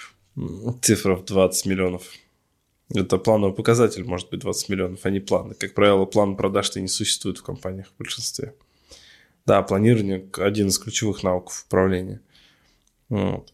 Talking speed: 140 wpm